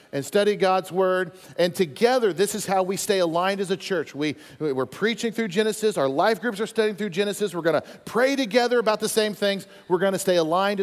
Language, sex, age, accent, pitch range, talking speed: English, male, 40-59, American, 160-230 Hz, 215 wpm